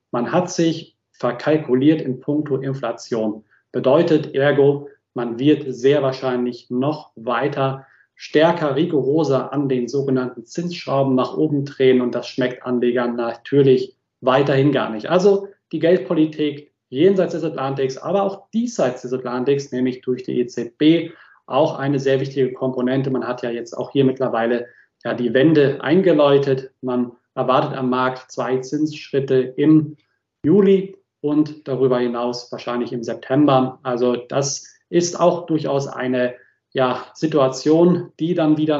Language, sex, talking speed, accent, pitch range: German, male, 135 wpm, German, 125-150 Hz